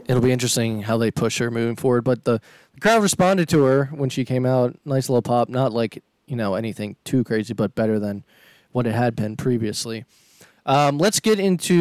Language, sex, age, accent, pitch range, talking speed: English, male, 20-39, American, 120-145 Hz, 210 wpm